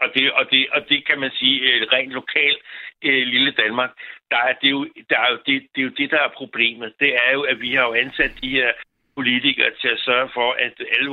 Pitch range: 125-150 Hz